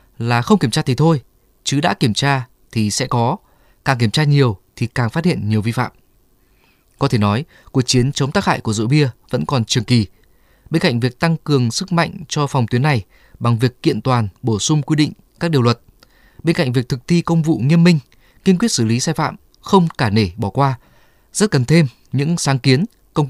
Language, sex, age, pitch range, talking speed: Vietnamese, male, 20-39, 115-150 Hz, 225 wpm